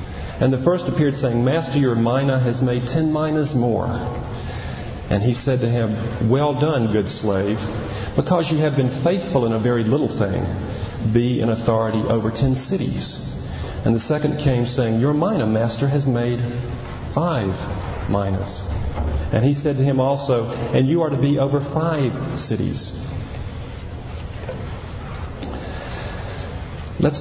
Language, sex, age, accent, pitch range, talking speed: English, male, 40-59, American, 110-140 Hz, 145 wpm